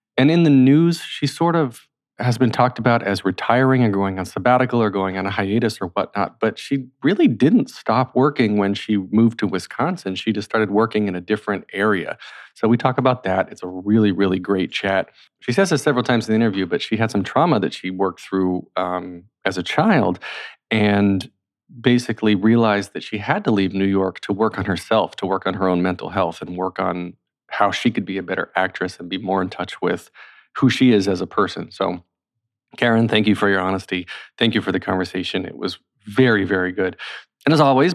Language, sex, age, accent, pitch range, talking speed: English, male, 40-59, American, 95-125 Hz, 220 wpm